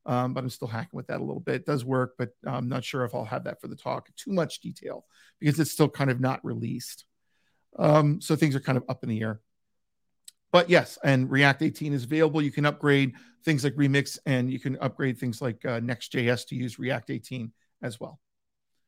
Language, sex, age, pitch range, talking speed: English, male, 50-69, 130-165 Hz, 225 wpm